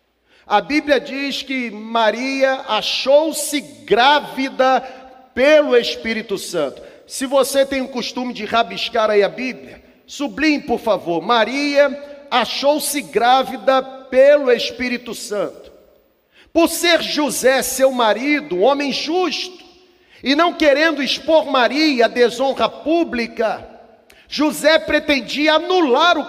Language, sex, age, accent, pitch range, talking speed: Portuguese, male, 40-59, Brazilian, 255-305 Hz, 110 wpm